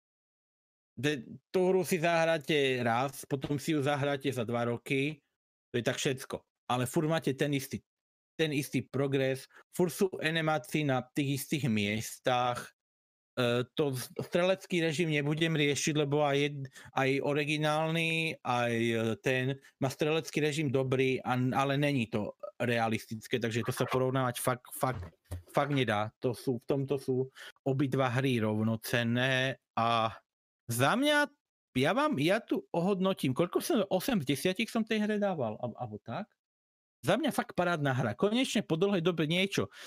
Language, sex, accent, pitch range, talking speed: Czech, male, native, 130-185 Hz, 145 wpm